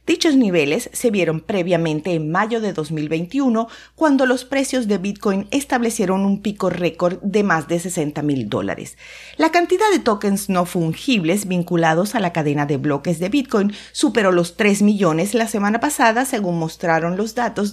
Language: Spanish